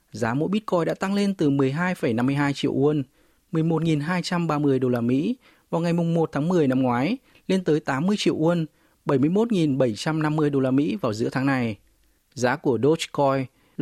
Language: Vietnamese